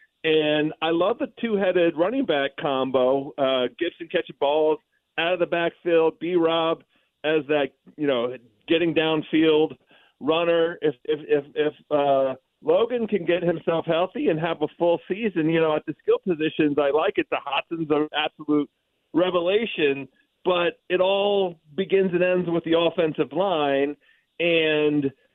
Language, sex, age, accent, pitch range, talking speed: English, male, 40-59, American, 145-175 Hz, 150 wpm